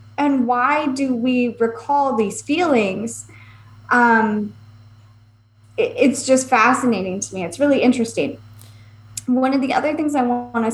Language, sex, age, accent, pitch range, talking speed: English, female, 20-39, American, 190-245 Hz, 130 wpm